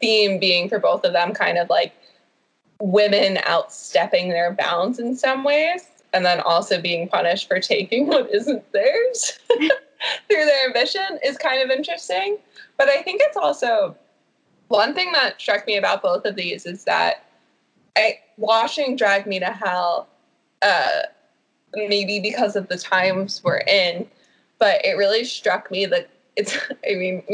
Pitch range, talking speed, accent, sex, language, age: 185-280 Hz, 160 wpm, American, female, English, 20-39